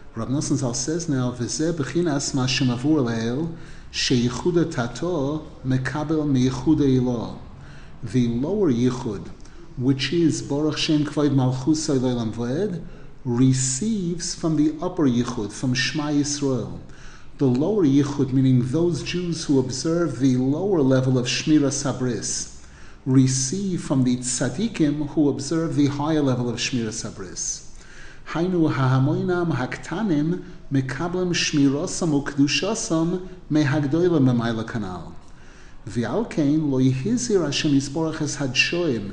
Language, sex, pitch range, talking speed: English, male, 130-165 Hz, 65 wpm